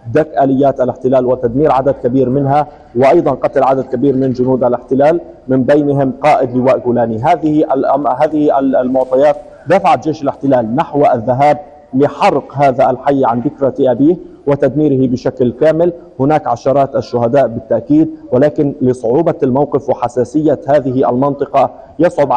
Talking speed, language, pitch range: 125 wpm, Arabic, 125-145 Hz